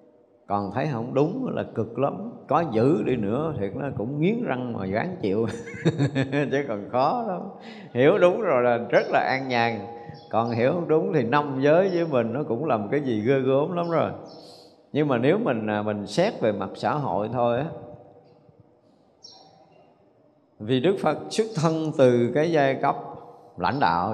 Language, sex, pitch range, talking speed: Vietnamese, male, 110-155 Hz, 180 wpm